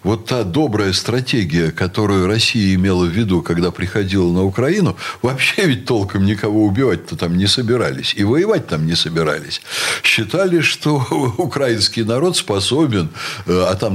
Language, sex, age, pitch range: Russian, male, 60-79, 95-145 Hz